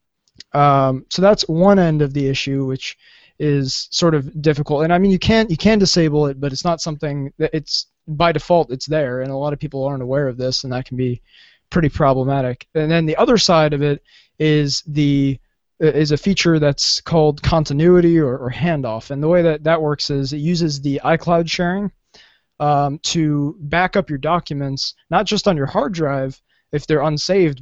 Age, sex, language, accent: 20-39, male, English, American